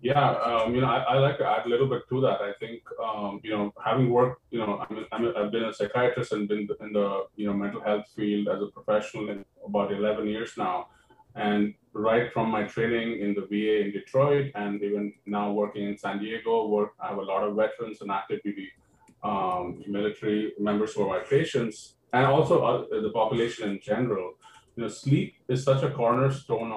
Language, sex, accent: English, male, Indian